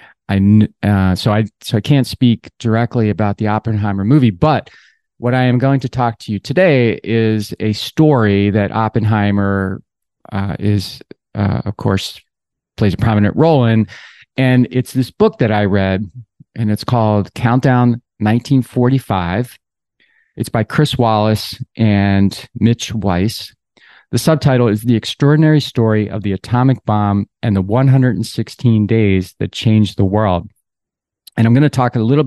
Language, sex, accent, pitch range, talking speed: English, male, American, 105-125 Hz, 150 wpm